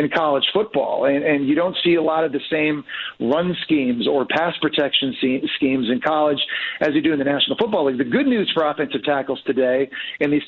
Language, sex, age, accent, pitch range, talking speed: English, male, 40-59, American, 140-175 Hz, 220 wpm